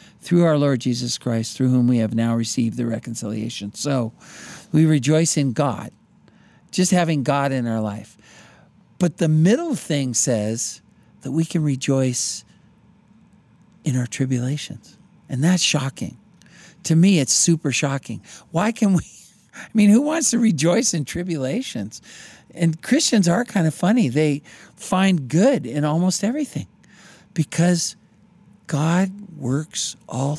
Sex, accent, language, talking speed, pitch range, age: male, American, English, 140 wpm, 135-185 Hz, 50-69